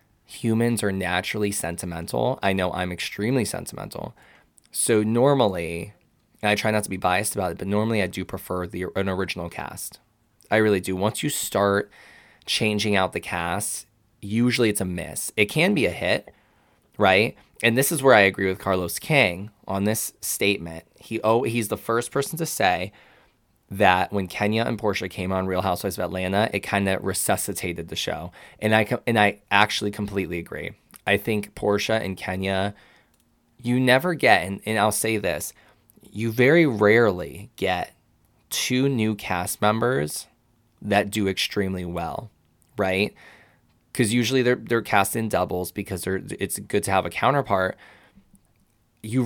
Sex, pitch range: male, 95-115 Hz